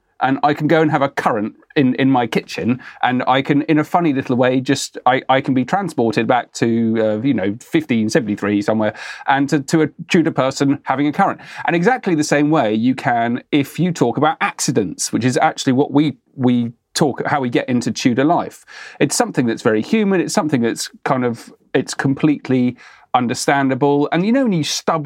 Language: English